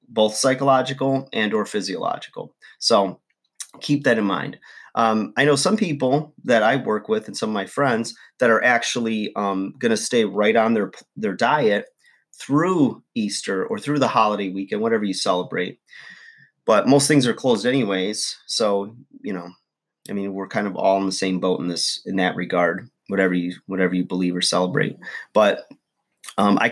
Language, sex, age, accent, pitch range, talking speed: English, male, 30-49, American, 95-135 Hz, 175 wpm